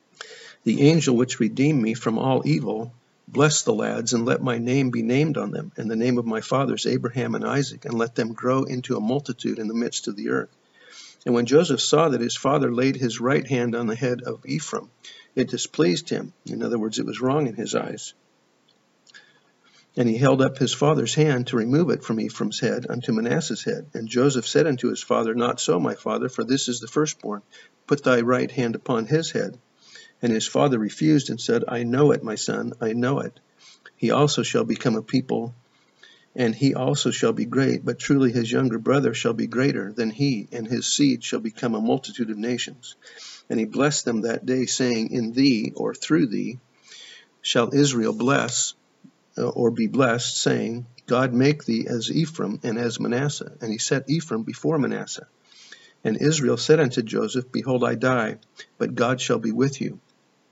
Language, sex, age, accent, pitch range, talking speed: English, male, 50-69, American, 115-140 Hz, 200 wpm